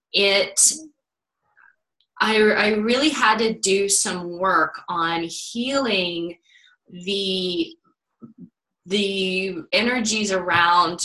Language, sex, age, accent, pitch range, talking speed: English, female, 20-39, American, 175-215 Hz, 80 wpm